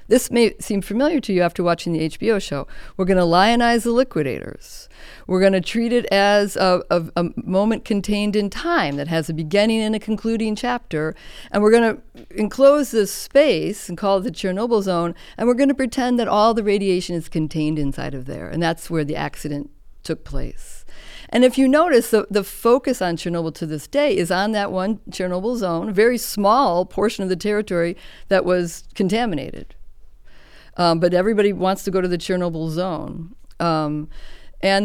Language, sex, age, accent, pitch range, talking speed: English, female, 50-69, American, 165-215 Hz, 190 wpm